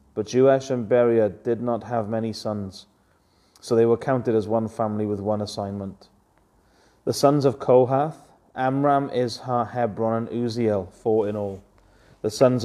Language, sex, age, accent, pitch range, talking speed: English, male, 30-49, British, 105-125 Hz, 155 wpm